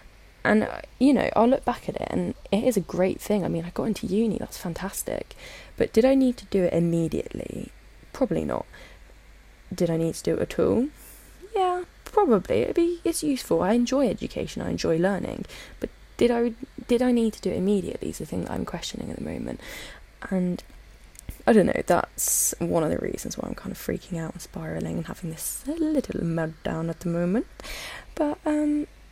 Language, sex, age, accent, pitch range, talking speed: English, female, 10-29, British, 165-245 Hz, 200 wpm